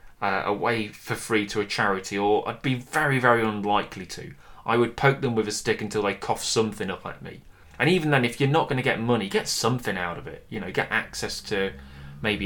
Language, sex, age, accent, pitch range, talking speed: English, male, 20-39, British, 95-140 Hz, 235 wpm